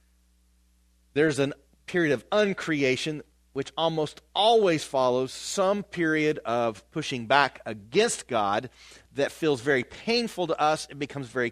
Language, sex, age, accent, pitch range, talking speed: English, male, 40-59, American, 125-170 Hz, 130 wpm